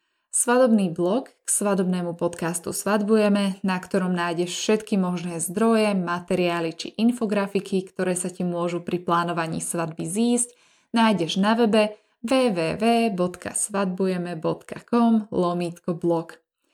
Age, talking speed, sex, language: 20-39, 95 wpm, female, Slovak